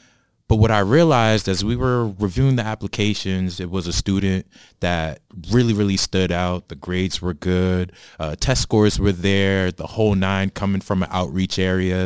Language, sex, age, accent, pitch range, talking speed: English, male, 20-39, American, 90-110 Hz, 180 wpm